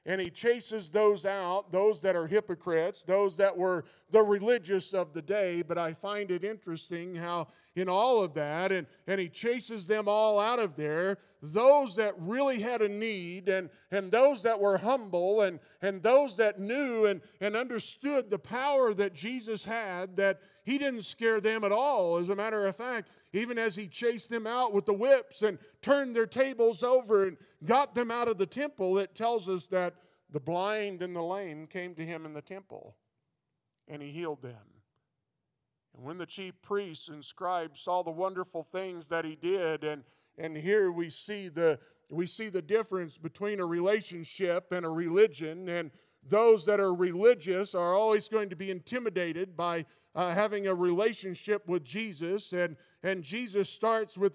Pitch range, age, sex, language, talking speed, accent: 175-215 Hz, 50-69, male, English, 185 wpm, American